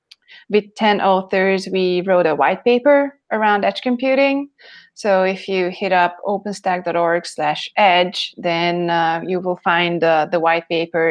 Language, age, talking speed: English, 20-39, 150 wpm